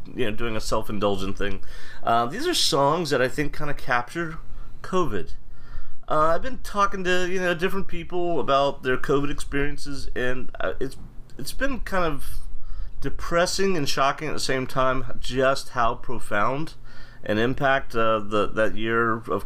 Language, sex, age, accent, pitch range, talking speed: English, male, 30-49, American, 105-140 Hz, 165 wpm